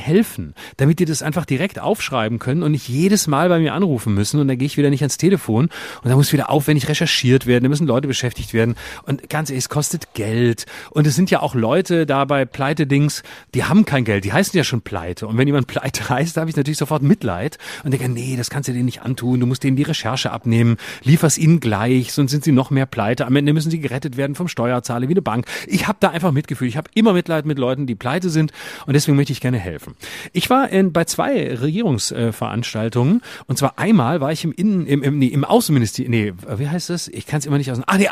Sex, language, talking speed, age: male, German, 245 wpm, 30-49